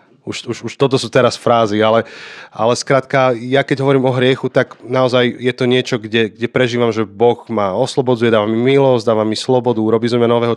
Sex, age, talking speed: male, 30-49, 210 wpm